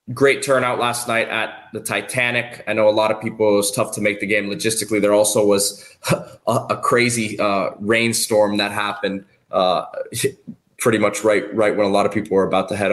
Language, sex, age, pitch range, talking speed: English, male, 20-39, 100-115 Hz, 210 wpm